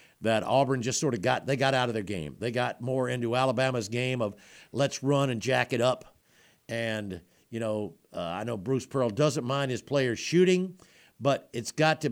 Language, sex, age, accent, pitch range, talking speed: English, male, 50-69, American, 120-160 Hz, 210 wpm